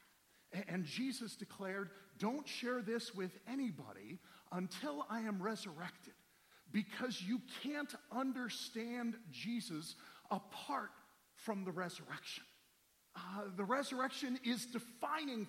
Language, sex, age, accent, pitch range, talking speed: English, male, 50-69, American, 200-255 Hz, 100 wpm